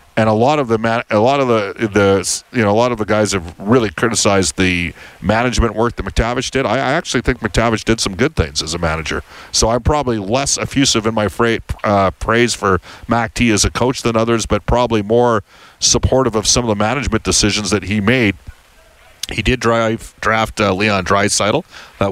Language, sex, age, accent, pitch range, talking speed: English, male, 40-59, American, 95-120 Hz, 205 wpm